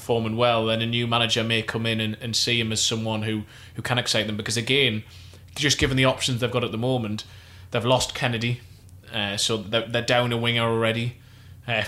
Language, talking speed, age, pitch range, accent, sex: English, 215 wpm, 20-39, 110-120 Hz, British, male